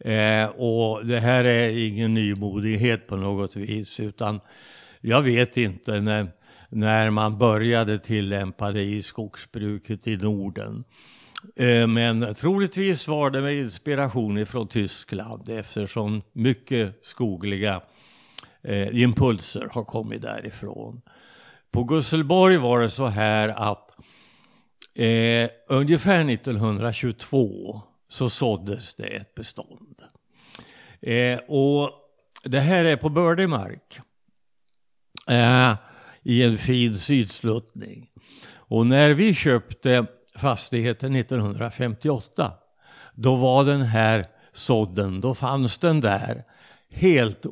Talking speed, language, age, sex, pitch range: 100 wpm, Swedish, 60-79, male, 105-130 Hz